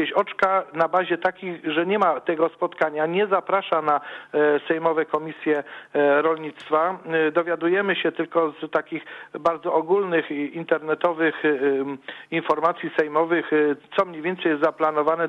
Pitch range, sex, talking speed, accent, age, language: 155-185 Hz, male, 120 wpm, native, 50-69, Polish